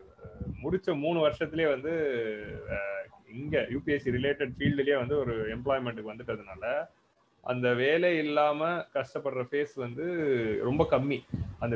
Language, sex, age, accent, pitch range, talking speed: Tamil, male, 30-49, native, 120-155 Hz, 105 wpm